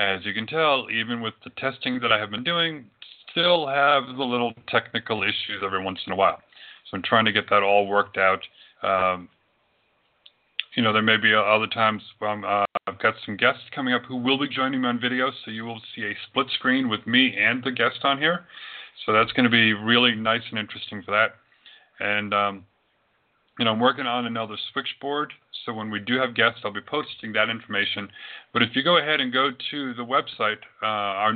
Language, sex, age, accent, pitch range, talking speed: English, male, 40-59, American, 110-140 Hz, 210 wpm